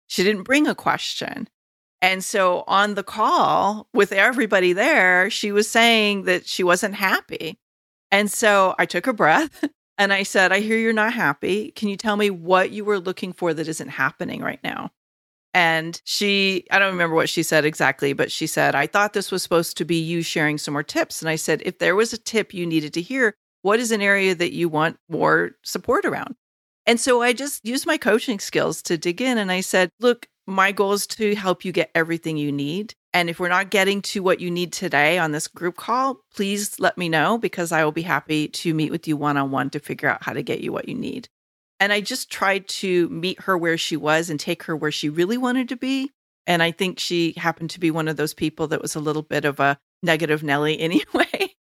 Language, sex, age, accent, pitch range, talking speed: English, female, 40-59, American, 165-215 Hz, 230 wpm